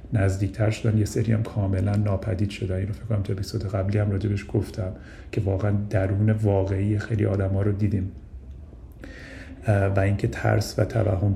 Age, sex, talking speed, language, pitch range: 40-59, male, 165 wpm, Persian, 100-110 Hz